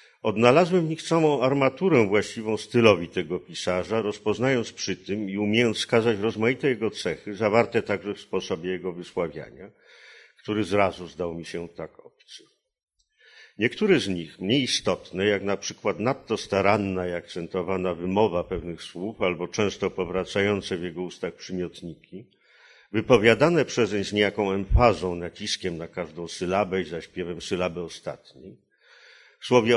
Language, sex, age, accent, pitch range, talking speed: Polish, male, 50-69, native, 90-110 Hz, 135 wpm